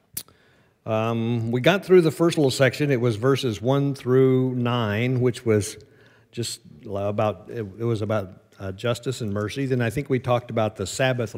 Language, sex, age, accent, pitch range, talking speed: English, male, 50-69, American, 110-135 Hz, 175 wpm